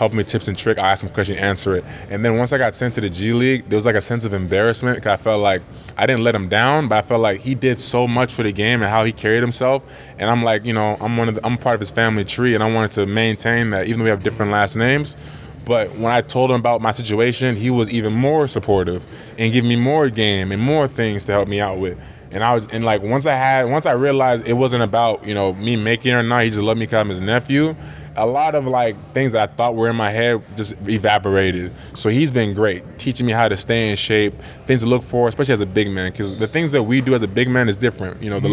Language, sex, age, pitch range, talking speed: English, male, 20-39, 105-125 Hz, 290 wpm